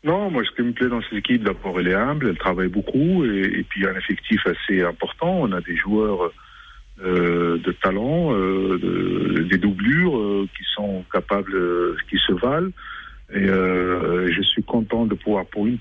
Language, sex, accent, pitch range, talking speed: French, male, French, 95-115 Hz, 205 wpm